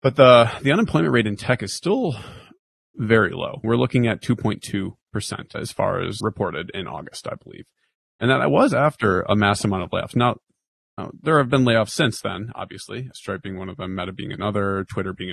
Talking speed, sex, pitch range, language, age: 205 wpm, male, 95-120 Hz, English, 30-49